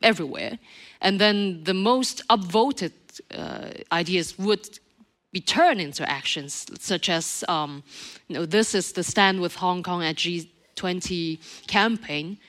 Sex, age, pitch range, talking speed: female, 30-49, 170-215 Hz, 135 wpm